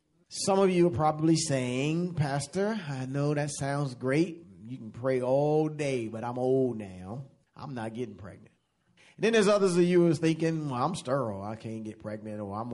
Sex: male